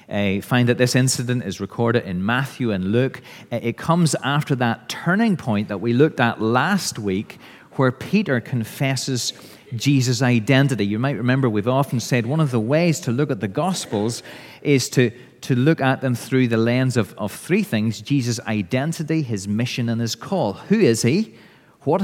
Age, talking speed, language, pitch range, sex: 30-49, 180 wpm, English, 115-150 Hz, male